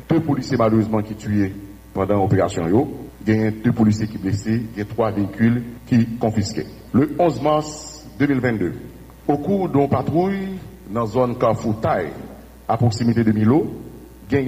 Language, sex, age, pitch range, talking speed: French, male, 60-79, 110-125 Hz, 160 wpm